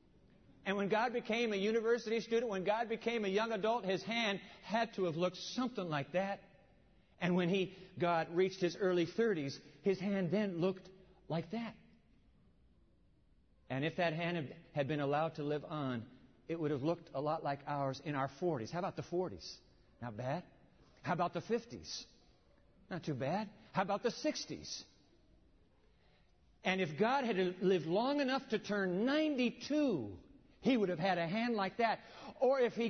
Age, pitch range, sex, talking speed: 50-69, 155-215 Hz, male, 170 wpm